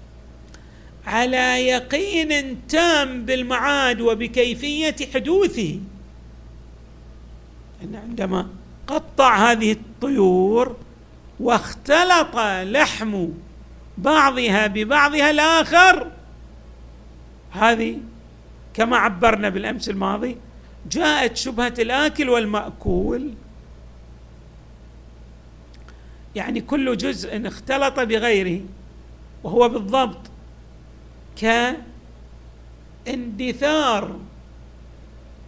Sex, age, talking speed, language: male, 50-69, 55 wpm, Arabic